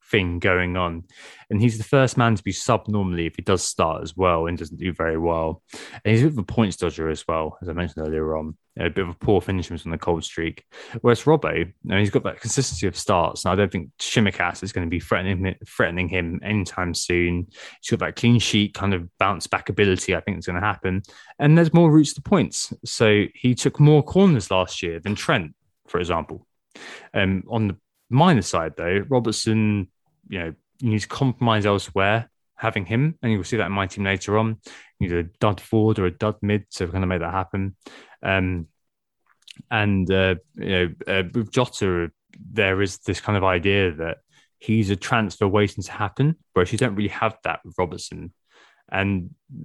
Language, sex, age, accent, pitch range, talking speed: English, male, 20-39, British, 90-115 Hz, 220 wpm